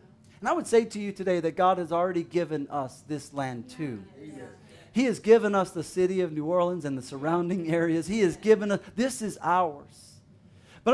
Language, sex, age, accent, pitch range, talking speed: English, male, 40-59, American, 175-225 Hz, 205 wpm